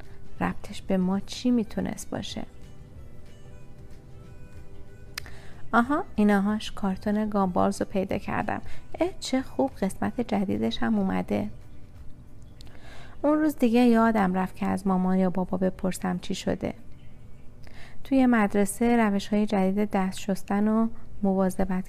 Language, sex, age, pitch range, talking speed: Persian, female, 30-49, 185-215 Hz, 110 wpm